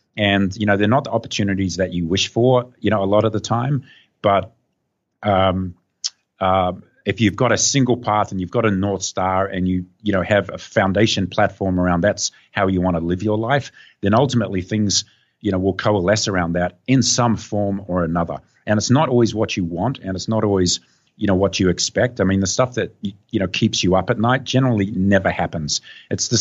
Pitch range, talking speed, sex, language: 90-110 Hz, 220 wpm, male, English